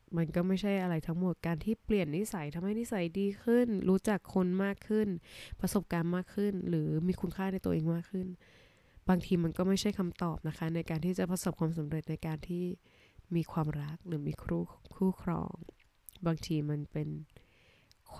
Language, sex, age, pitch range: Thai, female, 20-39, 155-190 Hz